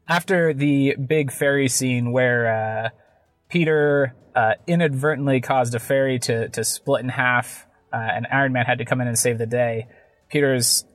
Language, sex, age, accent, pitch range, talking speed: English, male, 20-39, American, 120-170 Hz, 170 wpm